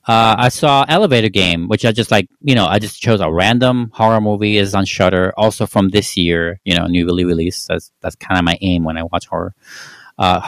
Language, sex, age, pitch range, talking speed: English, male, 40-59, 90-115 Hz, 235 wpm